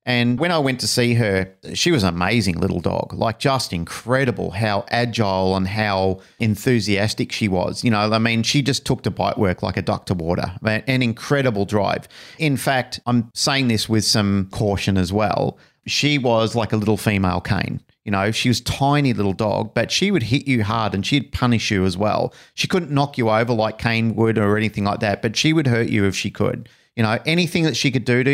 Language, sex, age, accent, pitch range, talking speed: English, male, 40-59, Australian, 105-130 Hz, 225 wpm